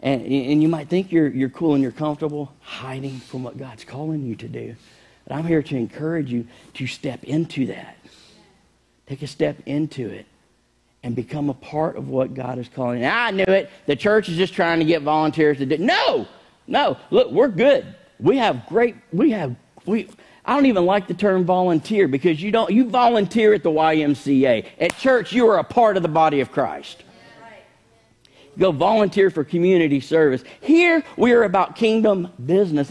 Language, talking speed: English, 190 wpm